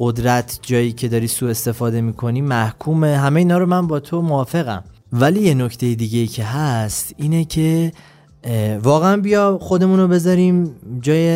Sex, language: male, Persian